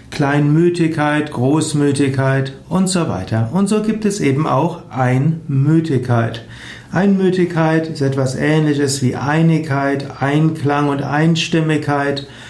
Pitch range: 130-165 Hz